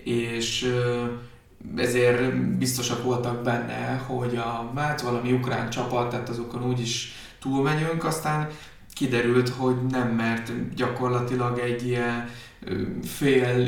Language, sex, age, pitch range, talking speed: Hungarian, male, 20-39, 115-125 Hz, 105 wpm